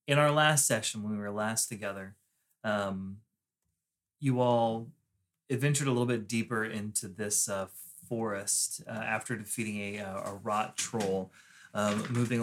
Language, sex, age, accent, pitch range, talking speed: English, male, 30-49, American, 105-135 Hz, 150 wpm